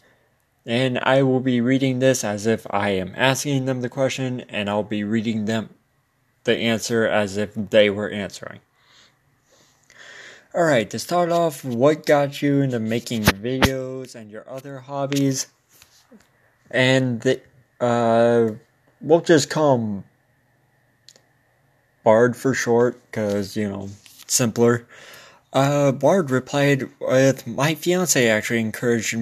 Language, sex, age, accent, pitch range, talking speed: English, male, 20-39, American, 115-135 Hz, 130 wpm